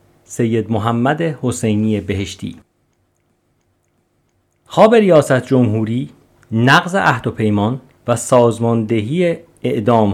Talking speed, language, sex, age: 85 wpm, Persian, male, 50-69